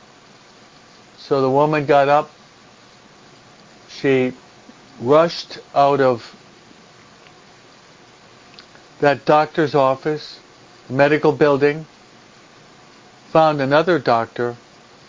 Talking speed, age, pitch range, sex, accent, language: 70 wpm, 60-79, 130-150 Hz, male, American, English